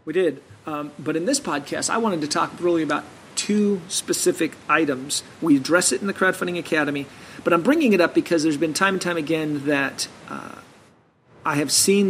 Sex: male